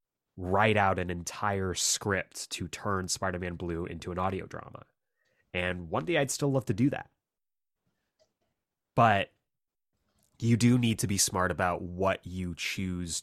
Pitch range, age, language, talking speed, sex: 85-110 Hz, 20-39, English, 150 wpm, male